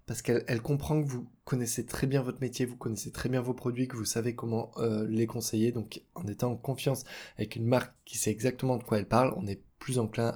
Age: 20-39